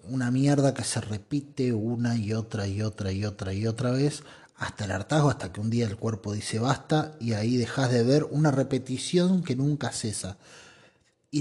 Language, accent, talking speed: Spanish, Argentinian, 195 wpm